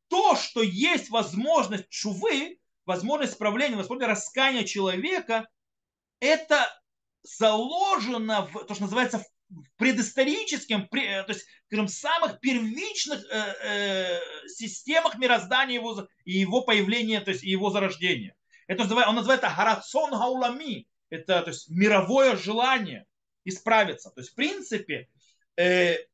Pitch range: 195-265 Hz